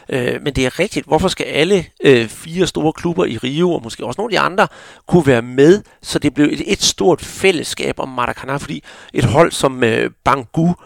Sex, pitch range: male, 130-165 Hz